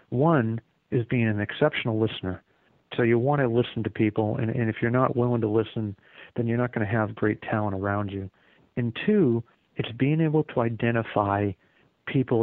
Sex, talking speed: male, 190 wpm